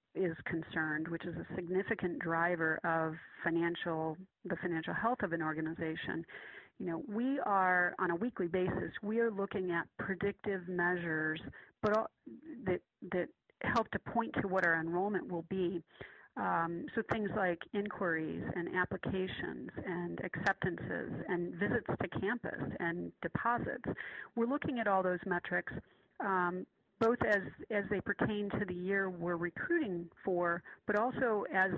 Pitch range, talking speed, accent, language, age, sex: 170-205 Hz, 145 wpm, American, English, 40-59, female